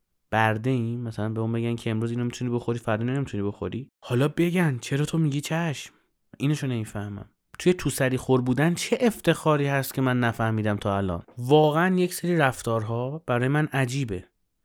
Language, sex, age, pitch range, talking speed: Persian, male, 30-49, 115-155 Hz, 170 wpm